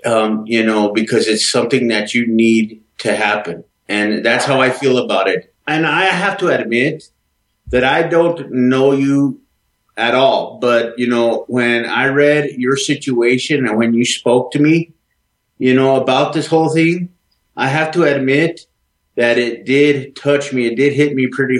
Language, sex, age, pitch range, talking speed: English, male, 30-49, 120-145 Hz, 180 wpm